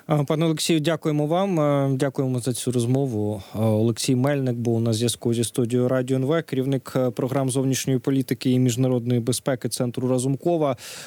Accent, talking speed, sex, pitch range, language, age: native, 140 wpm, male, 125-145 Hz, Ukrainian, 20-39